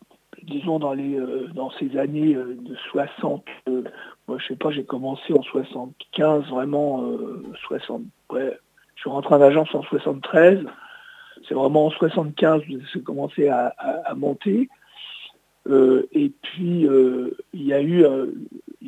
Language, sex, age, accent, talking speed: French, male, 60-79, French, 155 wpm